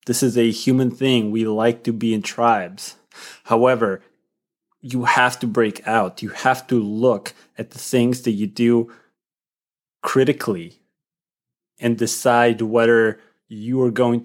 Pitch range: 110-125 Hz